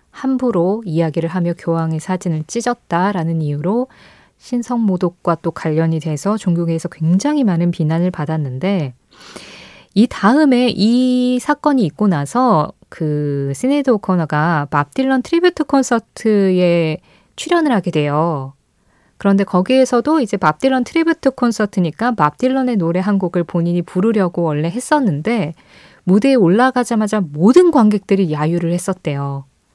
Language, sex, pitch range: Korean, female, 165-235 Hz